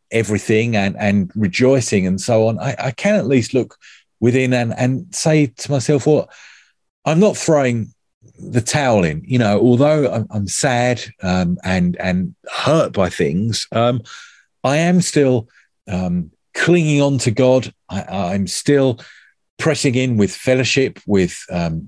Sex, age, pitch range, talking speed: male, 50-69, 95-130 Hz, 155 wpm